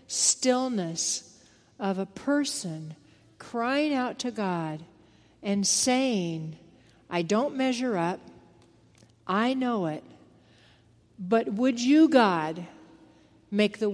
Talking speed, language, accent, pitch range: 100 wpm, English, American, 170-240 Hz